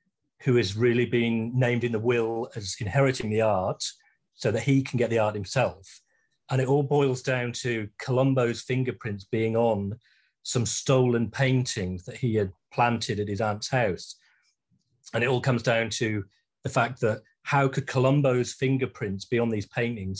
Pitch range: 110-135 Hz